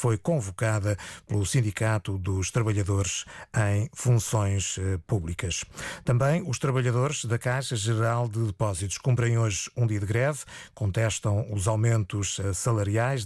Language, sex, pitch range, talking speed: Portuguese, male, 110-140 Hz, 120 wpm